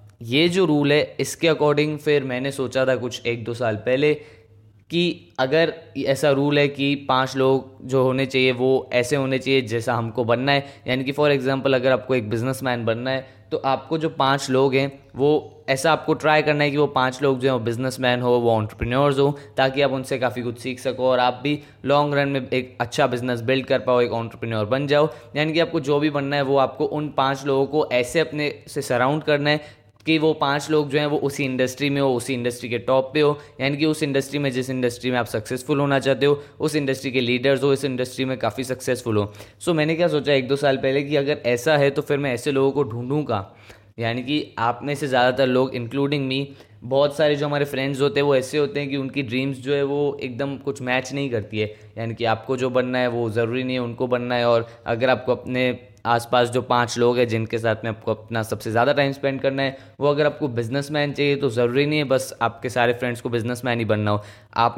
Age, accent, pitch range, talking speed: 10-29, native, 125-145 Hz, 235 wpm